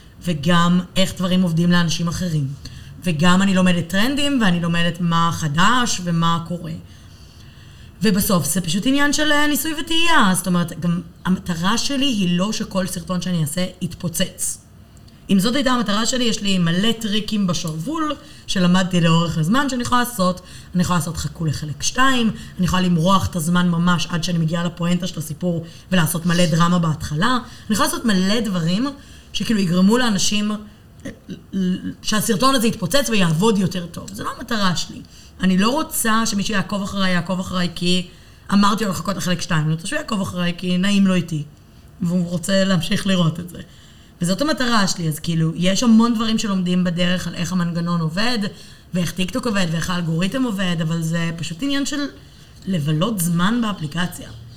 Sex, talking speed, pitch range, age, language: female, 165 wpm, 170-210 Hz, 20-39, Hebrew